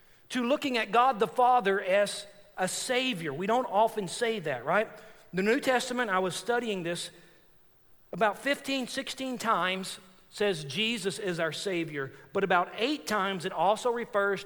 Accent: American